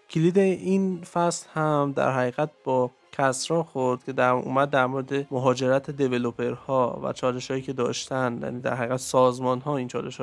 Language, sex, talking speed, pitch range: Persian, male, 160 wpm, 130-150 Hz